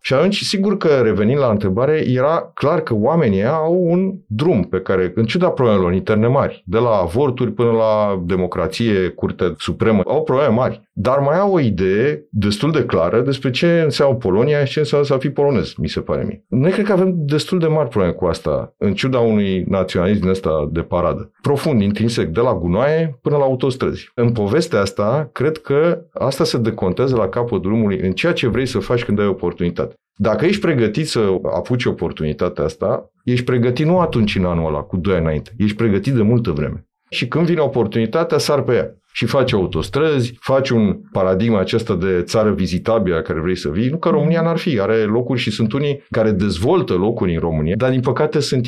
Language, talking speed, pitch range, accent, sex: Romanian, 200 wpm, 100-140 Hz, native, male